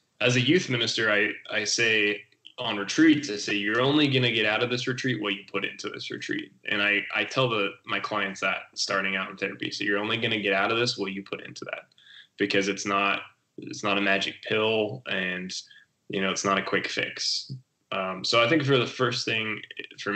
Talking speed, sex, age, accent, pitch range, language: 230 wpm, male, 10-29, American, 100-120 Hz, English